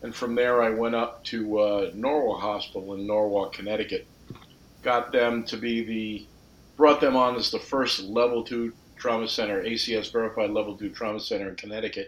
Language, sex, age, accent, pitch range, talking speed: English, male, 50-69, American, 95-110 Hz, 180 wpm